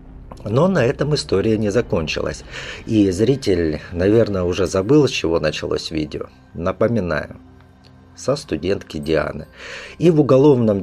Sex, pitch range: male, 85-125 Hz